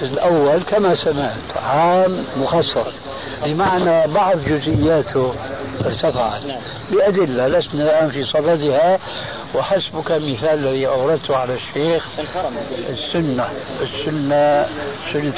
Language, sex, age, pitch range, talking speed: Arabic, male, 60-79, 135-170 Hz, 90 wpm